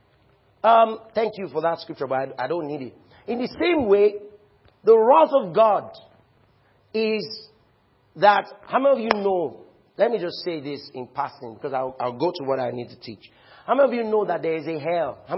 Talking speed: 210 wpm